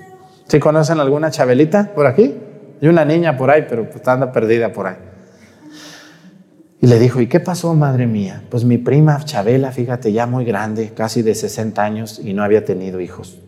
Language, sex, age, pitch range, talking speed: Spanish, male, 40-59, 110-165 Hz, 185 wpm